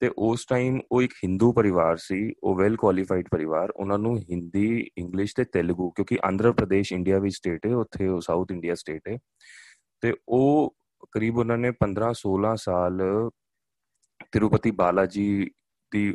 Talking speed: 155 wpm